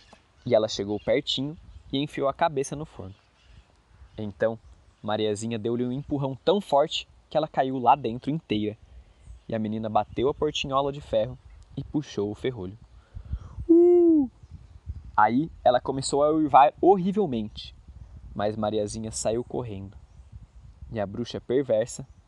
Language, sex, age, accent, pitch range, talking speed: Portuguese, male, 20-39, Brazilian, 105-165 Hz, 135 wpm